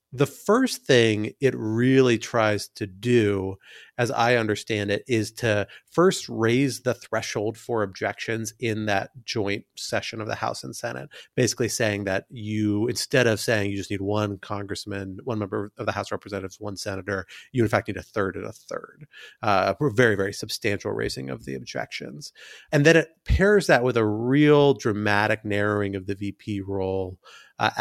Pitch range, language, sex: 100-115 Hz, English, male